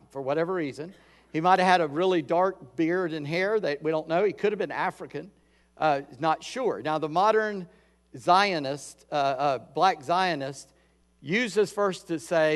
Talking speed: 175 wpm